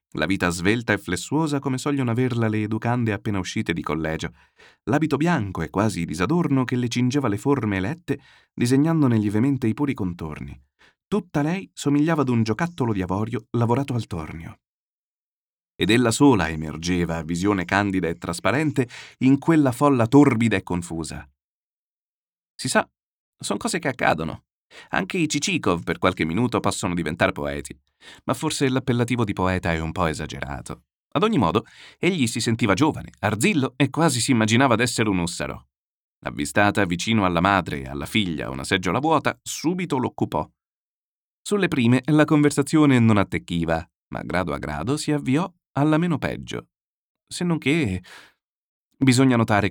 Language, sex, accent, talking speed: Italian, male, native, 150 wpm